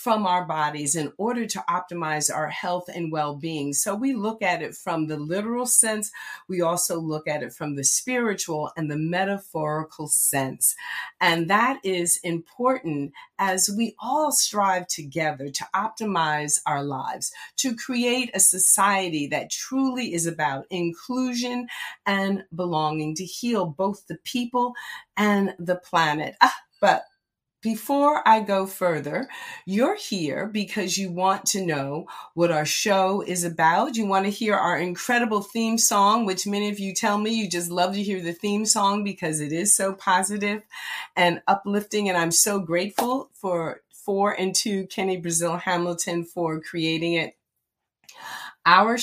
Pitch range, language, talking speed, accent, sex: 165-210 Hz, English, 155 wpm, American, female